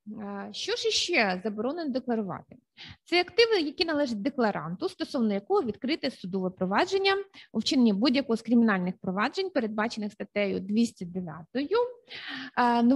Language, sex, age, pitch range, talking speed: Ukrainian, female, 20-39, 210-275 Hz, 115 wpm